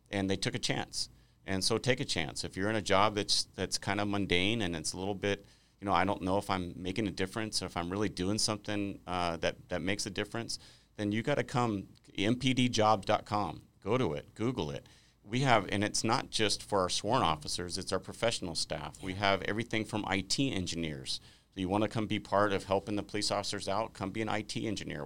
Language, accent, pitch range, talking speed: English, American, 90-105 Hz, 230 wpm